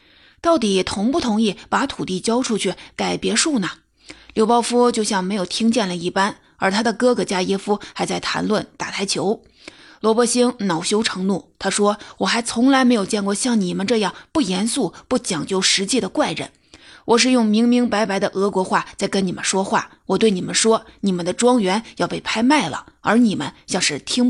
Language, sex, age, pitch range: Chinese, female, 30-49, 190-240 Hz